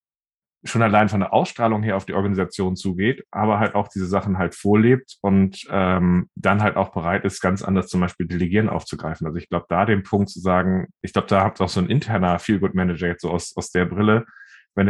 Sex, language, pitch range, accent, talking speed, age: male, German, 95-105 Hz, German, 220 wpm, 10-29